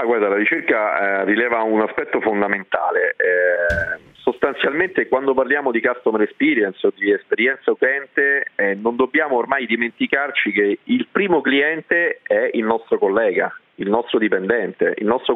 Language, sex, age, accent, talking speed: Italian, male, 40-59, native, 135 wpm